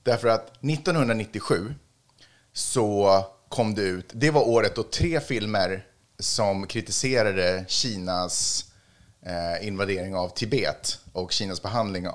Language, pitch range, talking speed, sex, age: Swedish, 95-125 Hz, 110 wpm, male, 30-49